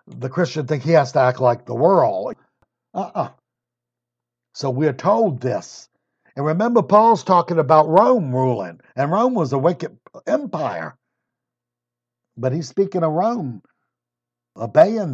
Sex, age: male, 60-79